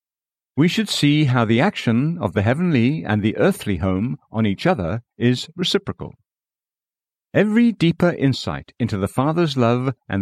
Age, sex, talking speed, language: 60-79, male, 155 wpm, English